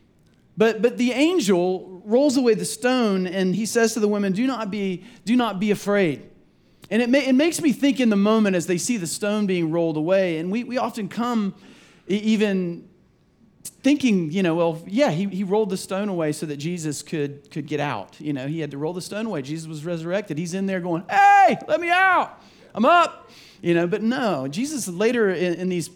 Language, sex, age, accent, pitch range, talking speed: English, male, 40-59, American, 160-225 Hz, 220 wpm